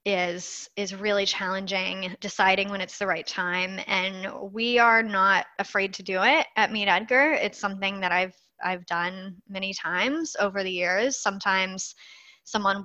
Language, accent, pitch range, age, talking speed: English, American, 185-225 Hz, 10-29, 160 wpm